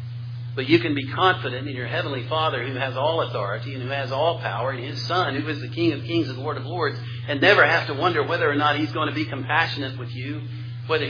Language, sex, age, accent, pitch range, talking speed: English, male, 50-69, American, 120-140 Hz, 255 wpm